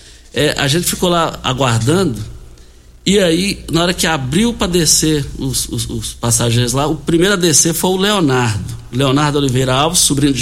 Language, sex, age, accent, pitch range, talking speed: Portuguese, male, 60-79, Brazilian, 115-160 Hz, 180 wpm